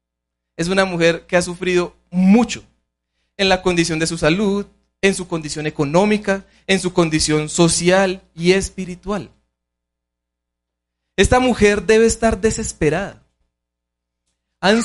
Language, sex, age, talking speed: Spanish, male, 30-49, 115 wpm